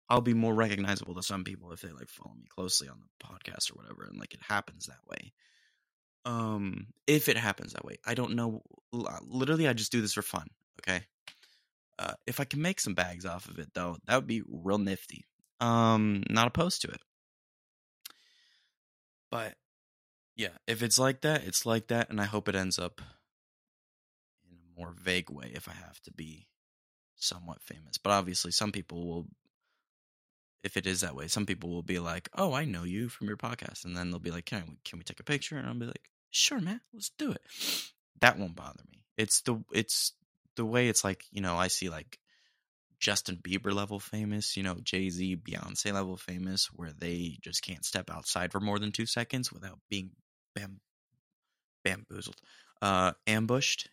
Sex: male